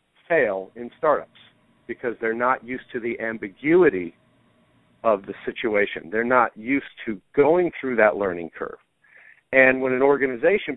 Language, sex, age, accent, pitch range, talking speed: English, male, 50-69, American, 120-150 Hz, 140 wpm